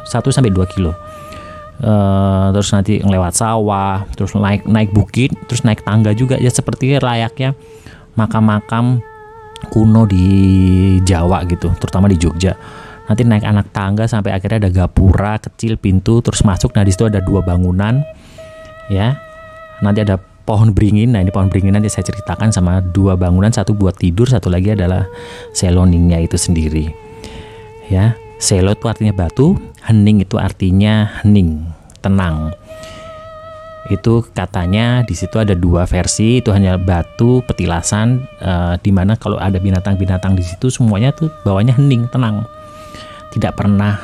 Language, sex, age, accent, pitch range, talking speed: Indonesian, male, 30-49, native, 95-115 Hz, 140 wpm